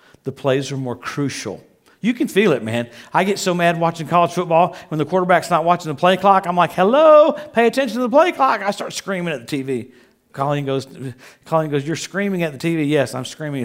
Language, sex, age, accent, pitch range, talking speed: English, male, 50-69, American, 120-150 Hz, 230 wpm